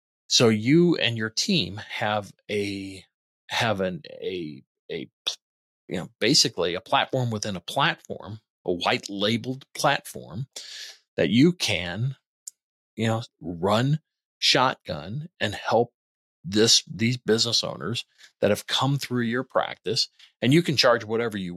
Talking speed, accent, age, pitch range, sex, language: 135 wpm, American, 40-59, 105-130 Hz, male, English